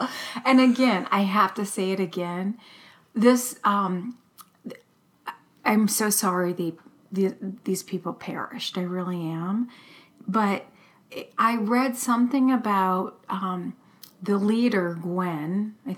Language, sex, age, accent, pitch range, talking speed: English, female, 40-59, American, 190-235 Hz, 115 wpm